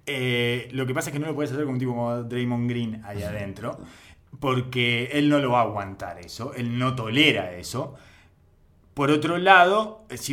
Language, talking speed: Spanish, 200 wpm